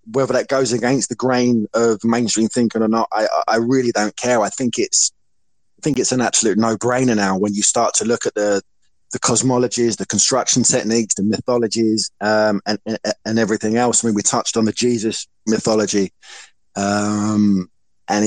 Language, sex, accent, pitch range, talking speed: English, male, British, 105-125 Hz, 185 wpm